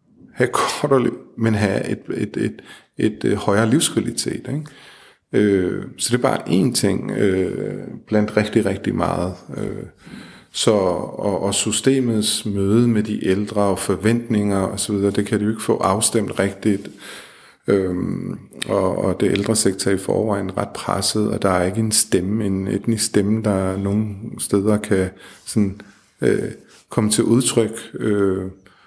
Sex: male